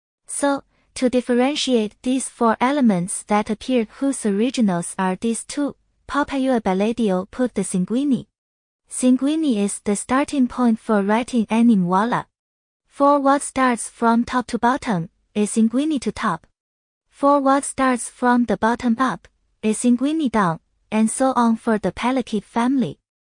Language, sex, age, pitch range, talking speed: Portuguese, female, 20-39, 215-265 Hz, 140 wpm